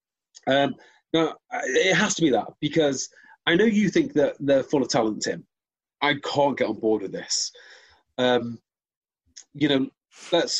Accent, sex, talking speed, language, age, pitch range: British, male, 165 wpm, English, 30-49, 140-185 Hz